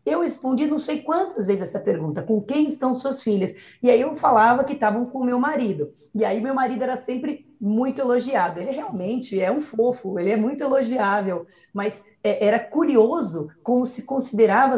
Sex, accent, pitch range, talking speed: female, Brazilian, 200-270 Hz, 185 wpm